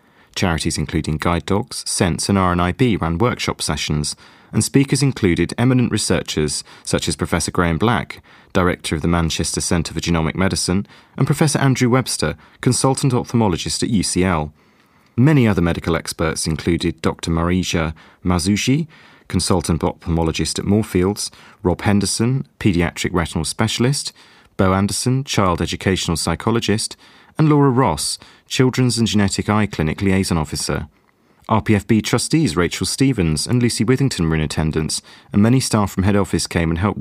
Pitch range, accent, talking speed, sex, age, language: 85-110 Hz, British, 140 wpm, male, 30-49, English